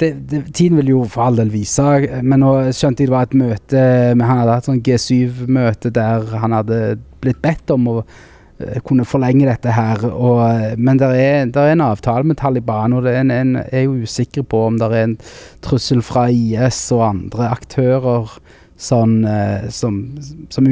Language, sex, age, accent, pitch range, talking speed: English, male, 20-39, Norwegian, 110-130 Hz, 175 wpm